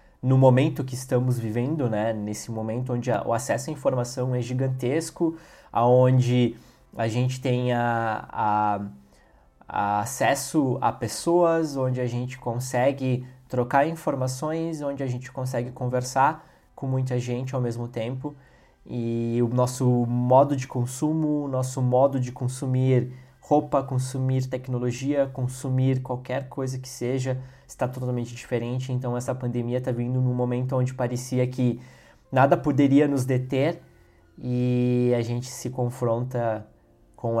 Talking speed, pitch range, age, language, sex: 130 wpm, 115-130 Hz, 20-39, Portuguese, male